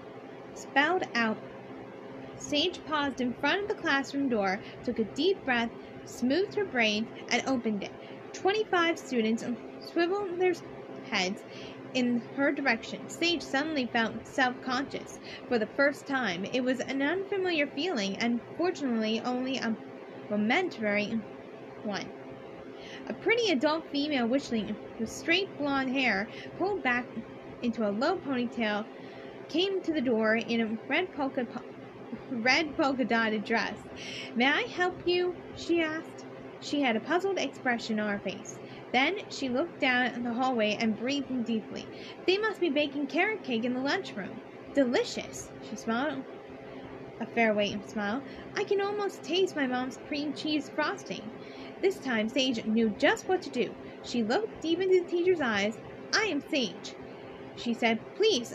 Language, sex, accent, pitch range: English, female, American, 230-325 Hz